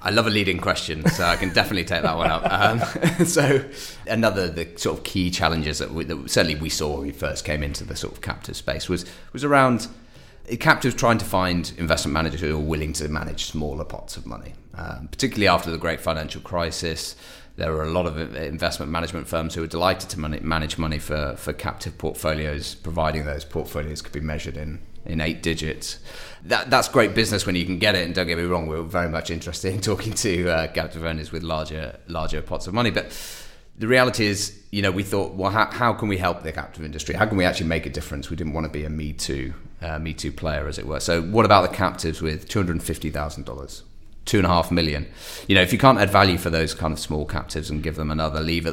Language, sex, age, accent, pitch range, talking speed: English, male, 30-49, British, 75-95 Hz, 235 wpm